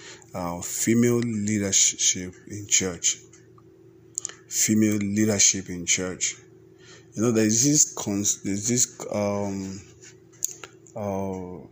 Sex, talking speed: male, 95 wpm